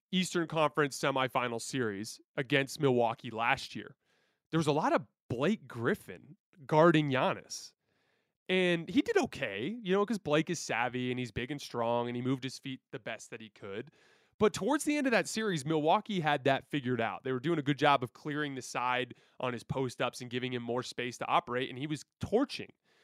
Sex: male